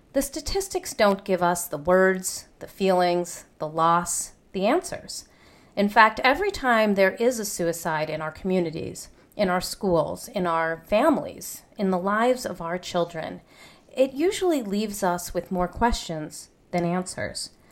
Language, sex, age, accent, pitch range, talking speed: English, female, 40-59, American, 170-240 Hz, 150 wpm